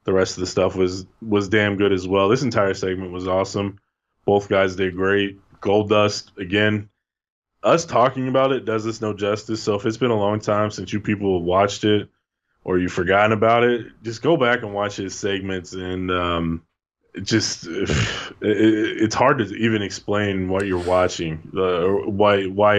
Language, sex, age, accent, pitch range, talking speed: English, male, 20-39, American, 90-105 Hz, 175 wpm